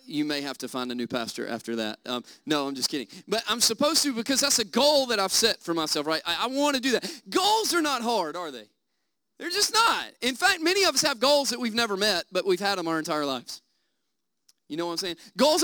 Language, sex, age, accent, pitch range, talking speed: English, male, 30-49, American, 220-320 Hz, 255 wpm